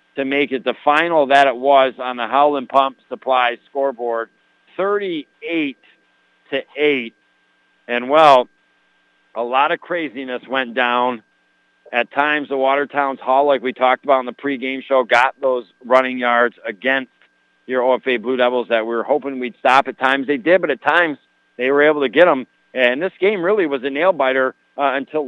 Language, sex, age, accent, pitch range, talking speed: English, male, 50-69, American, 120-140 Hz, 180 wpm